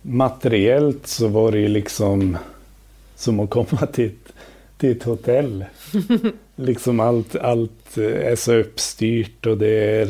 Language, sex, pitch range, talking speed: Swedish, male, 100-115 Hz, 130 wpm